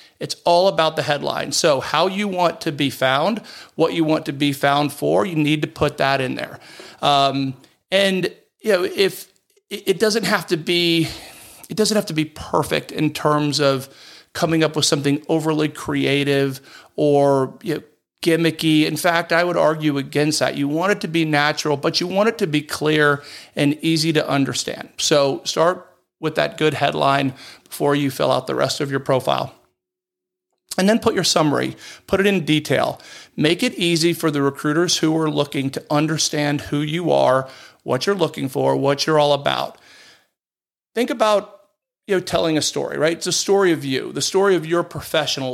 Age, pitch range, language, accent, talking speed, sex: 40-59, 145-180 Hz, English, American, 190 wpm, male